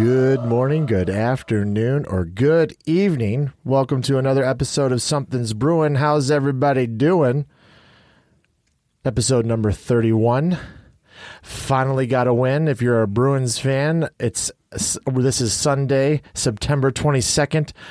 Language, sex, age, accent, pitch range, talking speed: English, male, 30-49, American, 105-135 Hz, 115 wpm